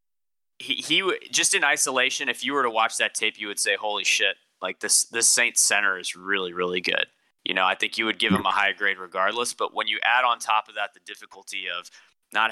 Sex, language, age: male, English, 20-39